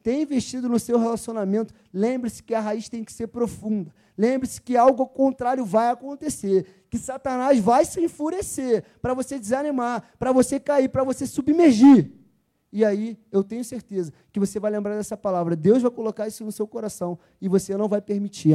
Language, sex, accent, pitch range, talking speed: Portuguese, male, Brazilian, 190-245 Hz, 180 wpm